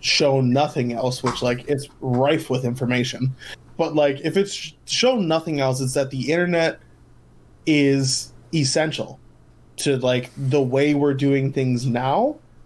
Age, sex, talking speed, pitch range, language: 20-39, male, 140 wpm, 125-155 Hz, English